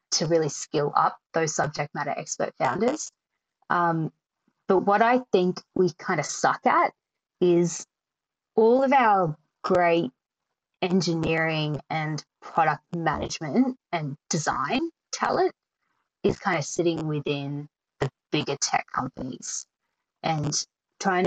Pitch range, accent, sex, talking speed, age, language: 150-185 Hz, Australian, female, 120 wpm, 20-39, English